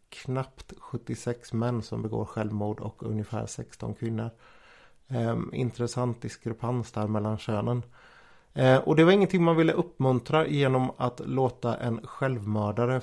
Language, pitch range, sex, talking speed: Swedish, 110-130 Hz, male, 125 wpm